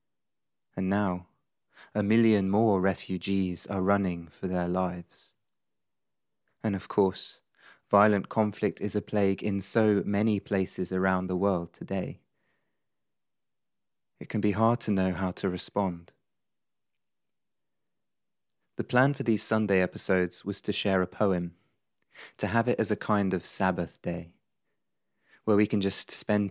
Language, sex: English, male